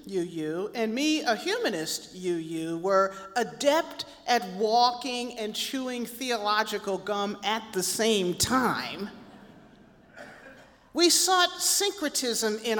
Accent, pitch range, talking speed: American, 210-285 Hz, 105 wpm